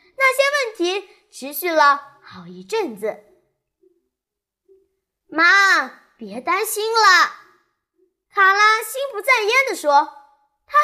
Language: Chinese